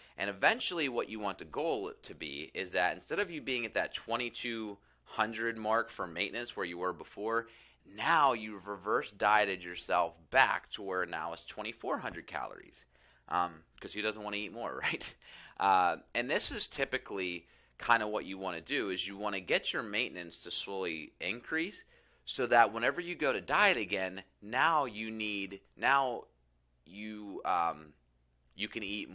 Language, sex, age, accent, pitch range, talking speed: English, male, 30-49, American, 85-110 Hz, 175 wpm